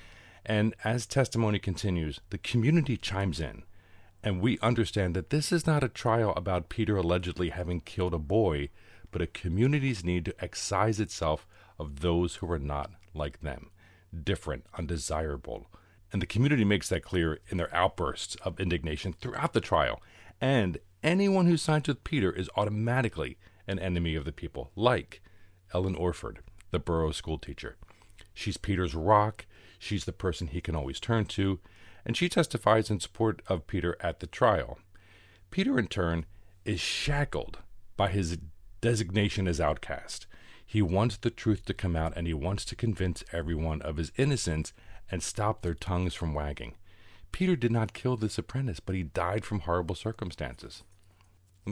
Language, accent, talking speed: English, American, 160 wpm